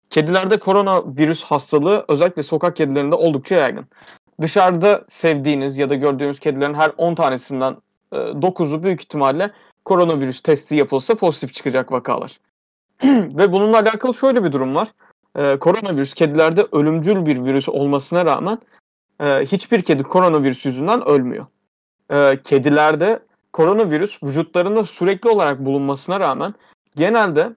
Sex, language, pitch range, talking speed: male, Turkish, 140-190 Hz, 120 wpm